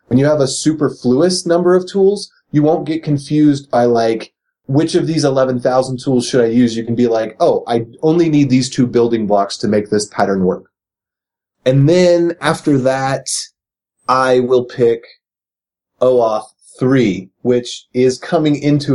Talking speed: 165 wpm